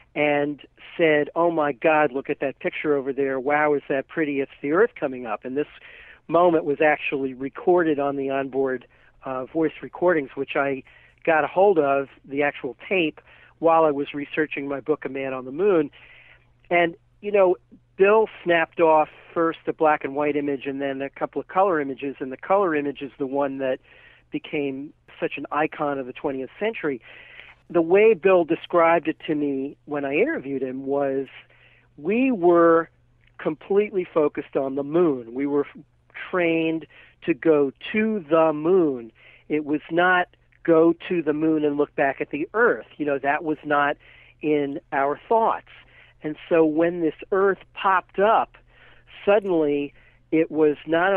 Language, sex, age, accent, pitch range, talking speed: English, male, 50-69, American, 140-170 Hz, 170 wpm